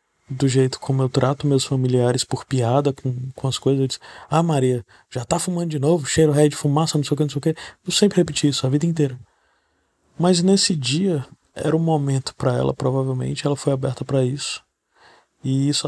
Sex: male